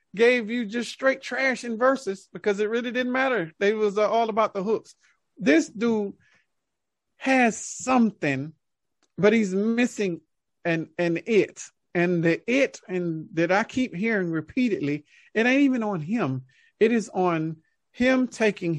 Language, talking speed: English, 150 wpm